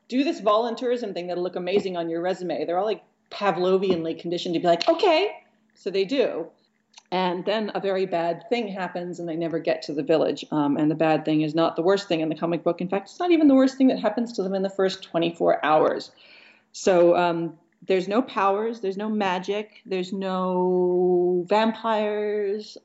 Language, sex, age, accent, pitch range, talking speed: English, female, 40-59, American, 175-220 Hz, 205 wpm